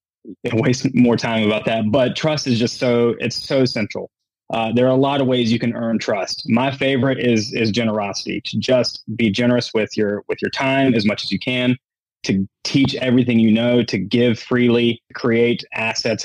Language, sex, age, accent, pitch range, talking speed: English, male, 20-39, American, 110-130 Hz, 200 wpm